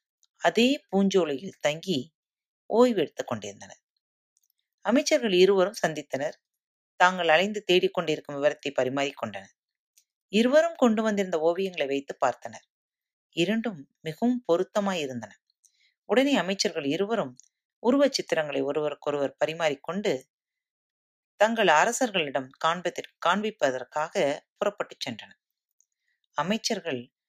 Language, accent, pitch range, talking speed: Tamil, native, 145-220 Hz, 80 wpm